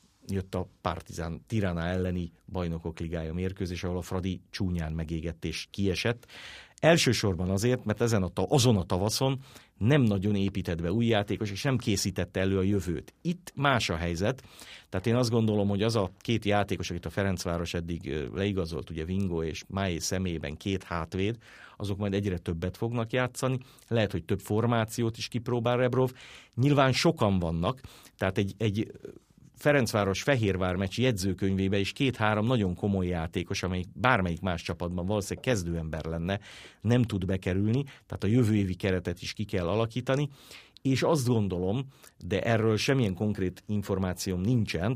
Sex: male